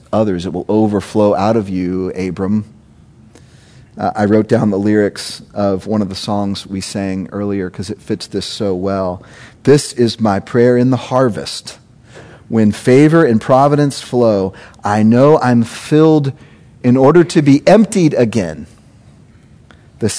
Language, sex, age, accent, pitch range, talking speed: English, male, 40-59, American, 105-140 Hz, 150 wpm